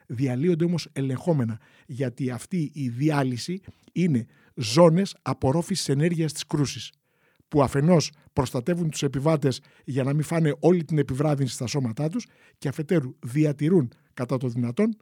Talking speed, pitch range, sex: 135 wpm, 140-175 Hz, male